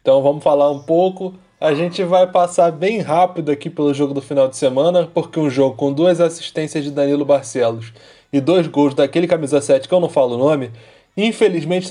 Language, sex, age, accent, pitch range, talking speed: Portuguese, male, 20-39, Brazilian, 140-180 Hz, 200 wpm